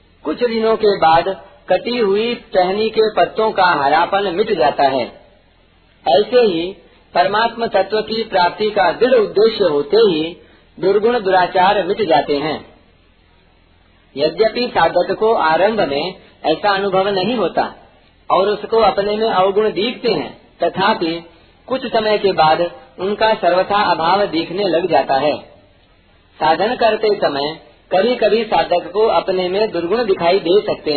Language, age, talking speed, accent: Hindi, 50-69, 140 wpm, native